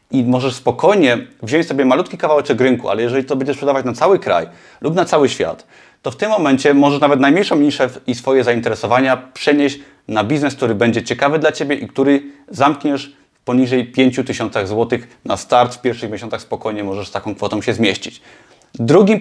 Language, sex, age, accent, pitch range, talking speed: Polish, male, 30-49, native, 120-145 Hz, 180 wpm